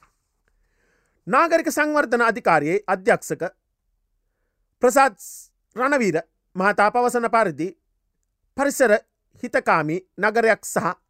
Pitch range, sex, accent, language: 180-240 Hz, male, Indian, Japanese